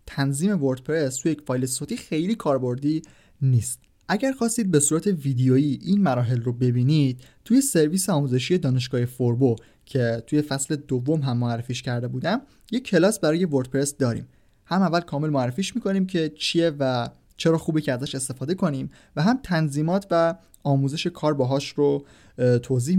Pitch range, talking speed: 125-165 Hz, 155 wpm